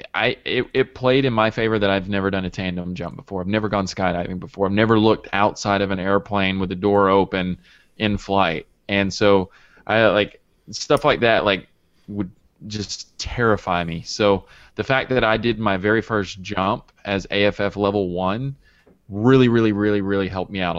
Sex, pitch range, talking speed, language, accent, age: male, 95-110 Hz, 190 wpm, English, American, 20-39